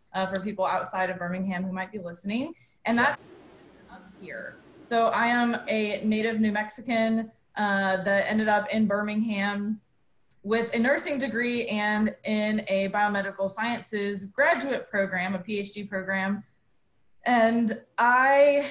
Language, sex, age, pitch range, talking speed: English, female, 20-39, 200-240 Hz, 140 wpm